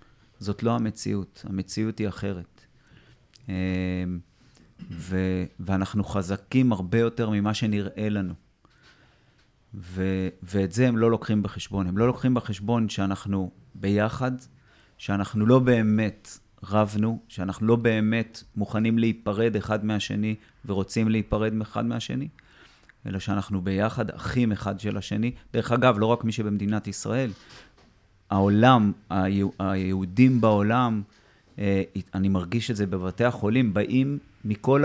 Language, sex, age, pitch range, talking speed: Hebrew, male, 30-49, 95-120 Hz, 115 wpm